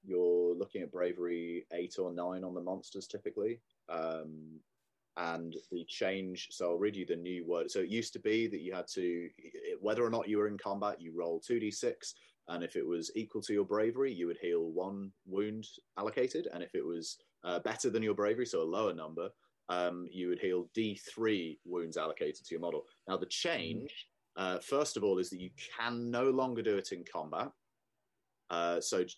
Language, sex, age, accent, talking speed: English, male, 30-49, British, 200 wpm